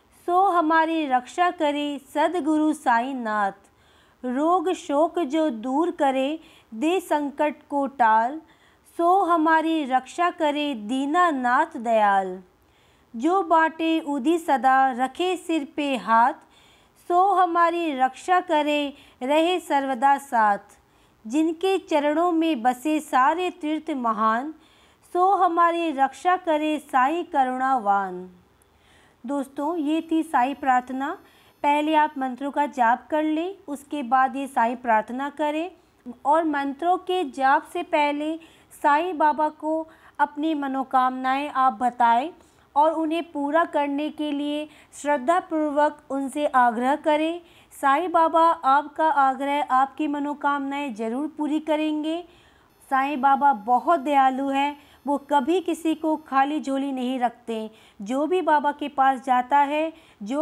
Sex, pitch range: female, 260-320 Hz